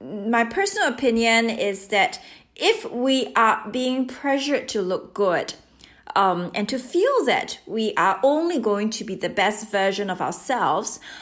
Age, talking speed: 30-49, 155 wpm